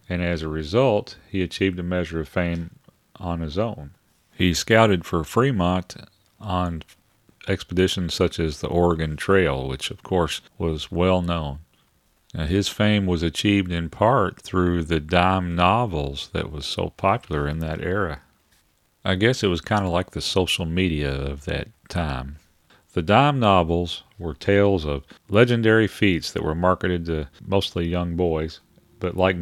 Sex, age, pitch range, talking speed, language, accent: male, 40-59, 80-95 Hz, 155 wpm, English, American